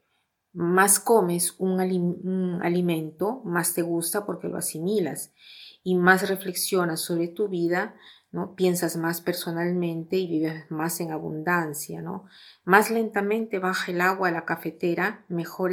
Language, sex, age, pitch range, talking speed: Spanish, female, 30-49, 165-185 Hz, 140 wpm